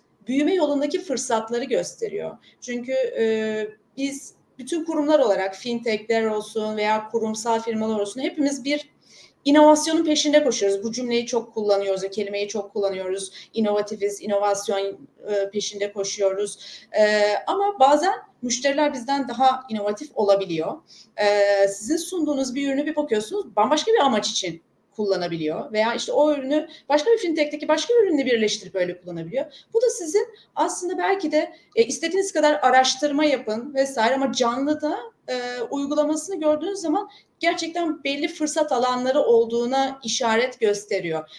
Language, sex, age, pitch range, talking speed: Turkish, female, 30-49, 215-300 Hz, 130 wpm